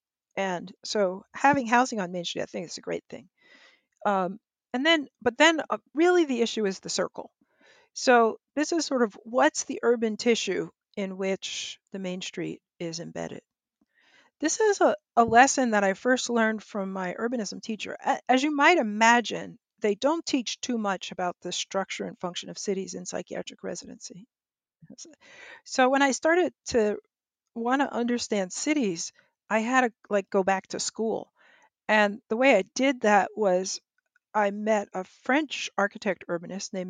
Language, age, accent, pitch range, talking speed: English, 50-69, American, 195-260 Hz, 170 wpm